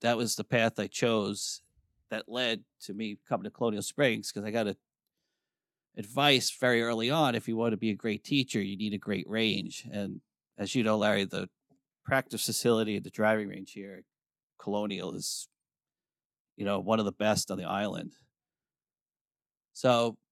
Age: 40-59